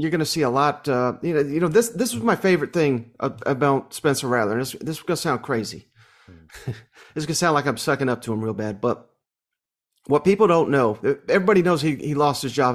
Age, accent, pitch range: 40-59, American, 125-160 Hz